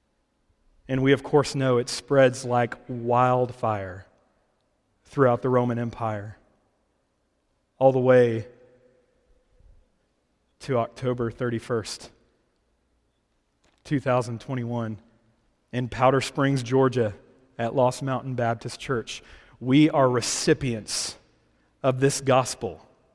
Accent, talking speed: American, 90 wpm